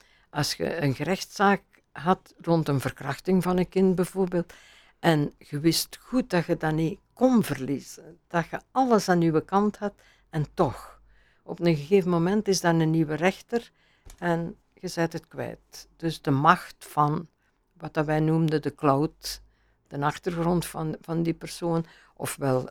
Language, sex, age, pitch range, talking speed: Dutch, female, 60-79, 150-180 Hz, 160 wpm